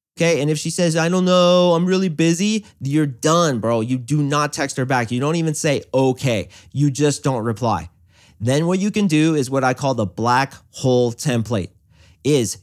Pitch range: 115-165 Hz